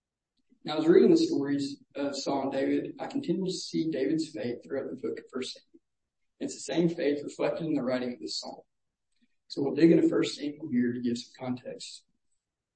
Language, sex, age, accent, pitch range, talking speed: English, male, 40-59, American, 135-175 Hz, 215 wpm